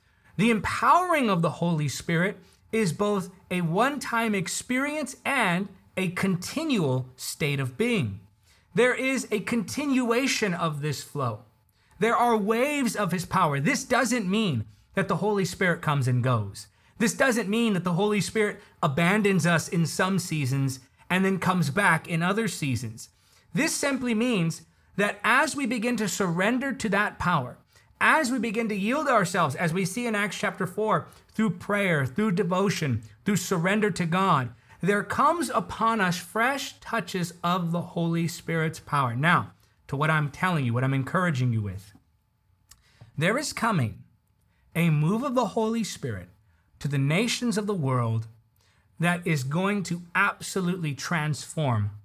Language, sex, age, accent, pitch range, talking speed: English, male, 30-49, American, 130-210 Hz, 155 wpm